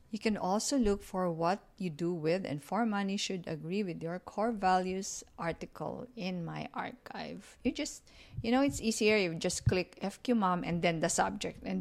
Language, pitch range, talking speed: English, 175-230 Hz, 195 wpm